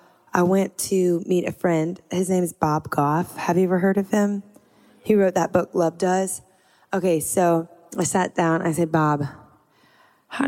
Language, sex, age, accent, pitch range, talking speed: English, female, 20-39, American, 155-190 Hz, 190 wpm